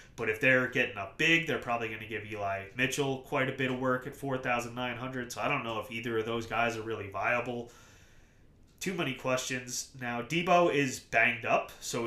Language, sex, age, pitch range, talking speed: English, male, 30-49, 110-130 Hz, 205 wpm